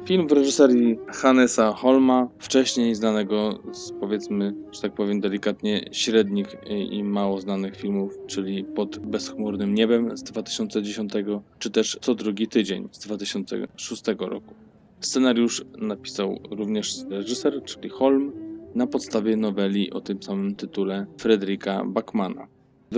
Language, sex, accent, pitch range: Polish, male, native, 100-125 Hz